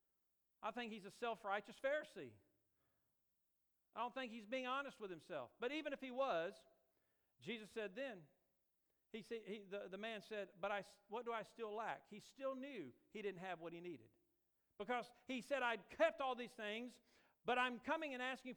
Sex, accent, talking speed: male, American, 185 wpm